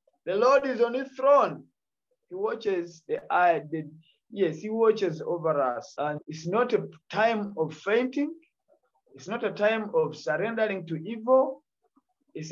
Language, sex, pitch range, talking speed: English, male, 155-215 Hz, 150 wpm